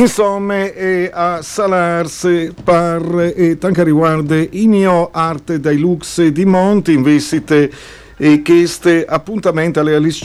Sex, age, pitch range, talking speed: male, 50-69, 145-175 Hz, 140 wpm